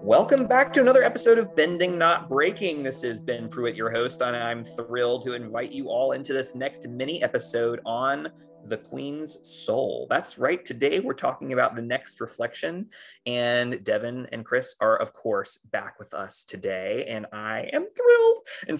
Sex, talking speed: male, 180 wpm